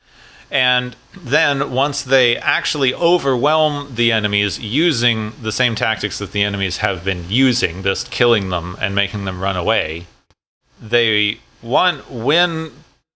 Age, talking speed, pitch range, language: 30-49, 130 wpm, 100-125 Hz, English